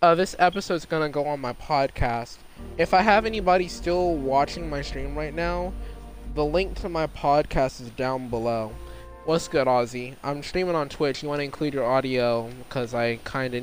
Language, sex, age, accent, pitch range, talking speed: English, male, 20-39, American, 115-150 Hz, 180 wpm